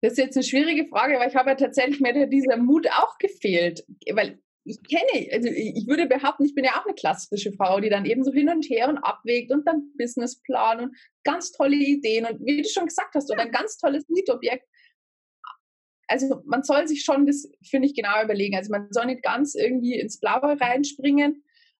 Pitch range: 225-285 Hz